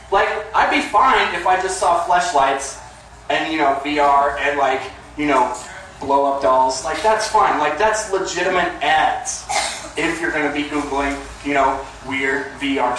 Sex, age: male, 30-49